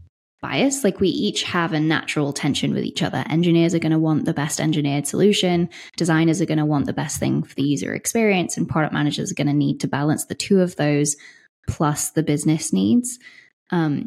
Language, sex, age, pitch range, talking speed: English, female, 20-39, 145-165 Hz, 215 wpm